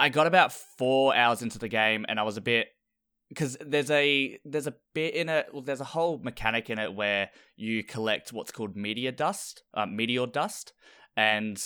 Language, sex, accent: English, male, Australian